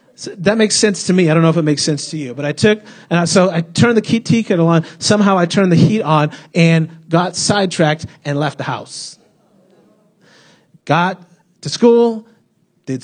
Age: 30-49